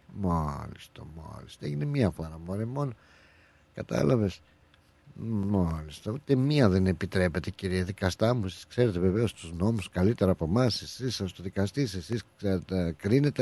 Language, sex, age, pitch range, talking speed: Greek, male, 60-79, 95-135 Hz, 150 wpm